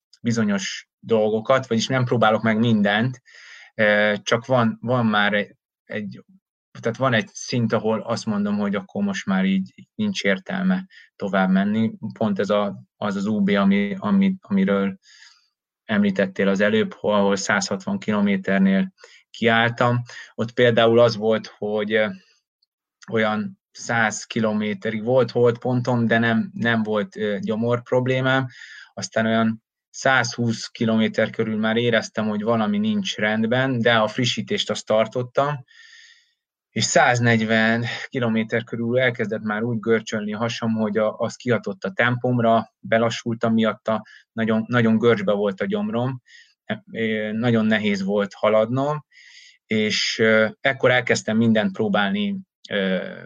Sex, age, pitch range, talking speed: male, 20-39, 110-130 Hz, 125 wpm